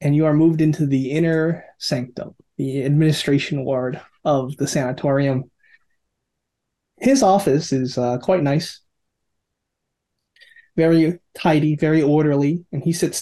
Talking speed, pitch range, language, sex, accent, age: 125 wpm, 140-175 Hz, English, male, American, 30-49